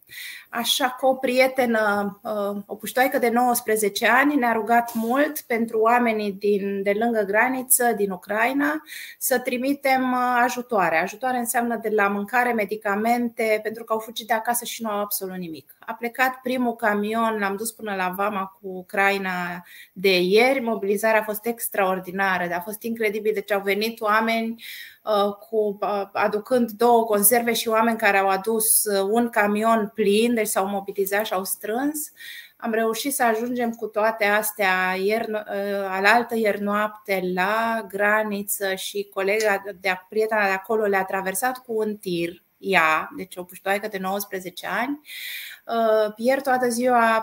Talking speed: 140 wpm